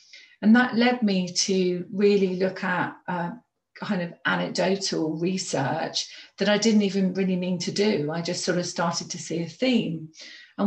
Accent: British